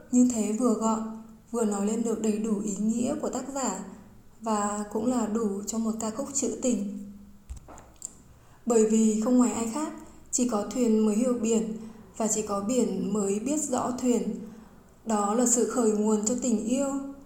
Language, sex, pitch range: Vietnamese, female, 215-245 Hz